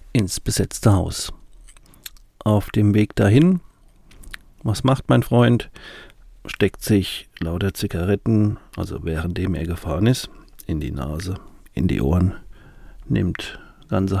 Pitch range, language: 95-110 Hz, German